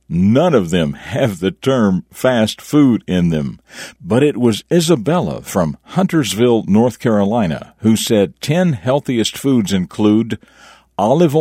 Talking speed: 130 wpm